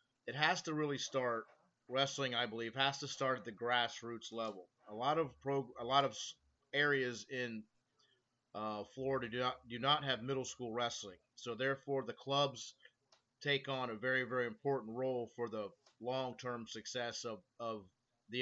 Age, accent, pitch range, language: 30-49, American, 120-135 Hz, English